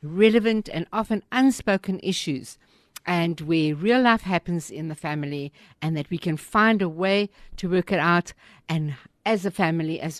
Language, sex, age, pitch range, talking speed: English, female, 60-79, 155-195 Hz, 170 wpm